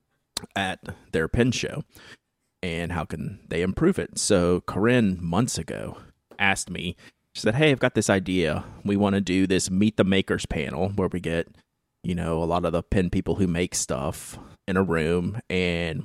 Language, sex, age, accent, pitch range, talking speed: English, male, 30-49, American, 90-105 Hz, 185 wpm